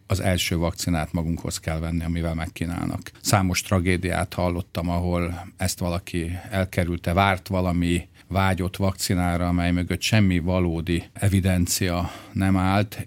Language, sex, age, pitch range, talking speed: Hungarian, male, 50-69, 85-95 Hz, 120 wpm